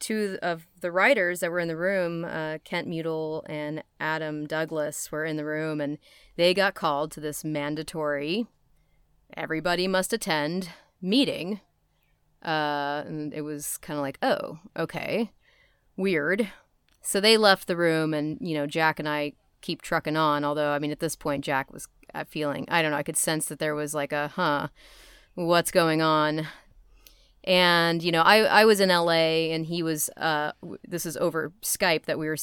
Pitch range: 150-175 Hz